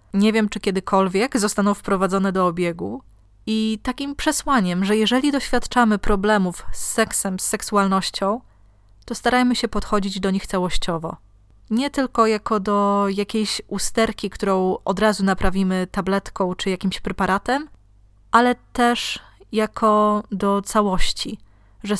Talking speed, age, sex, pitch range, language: 125 wpm, 20-39, female, 185-220 Hz, Polish